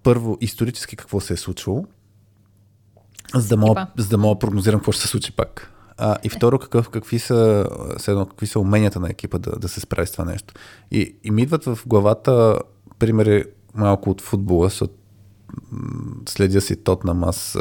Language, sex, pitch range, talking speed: Bulgarian, male, 95-110 Hz, 165 wpm